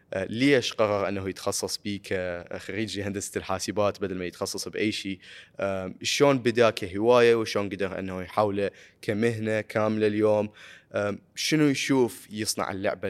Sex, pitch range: male, 95-110 Hz